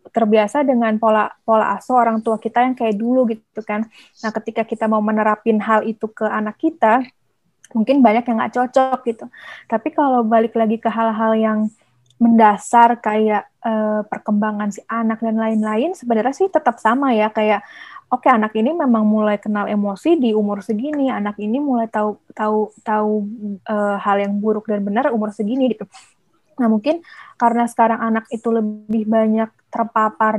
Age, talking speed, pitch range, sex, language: 20-39, 170 wpm, 215-245 Hz, female, Indonesian